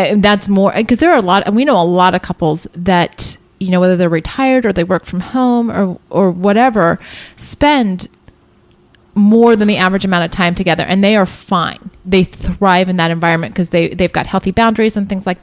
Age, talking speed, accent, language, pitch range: 30-49, 215 wpm, American, English, 180-225 Hz